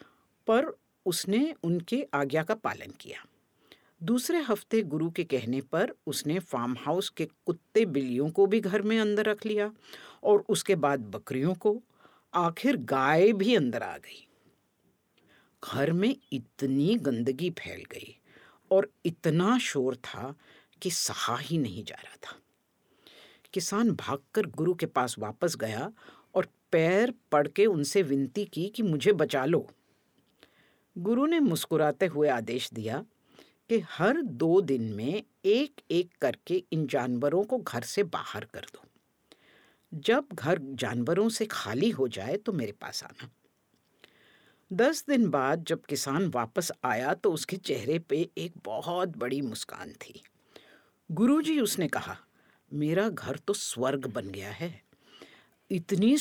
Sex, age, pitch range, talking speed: female, 50-69, 140-210 Hz, 140 wpm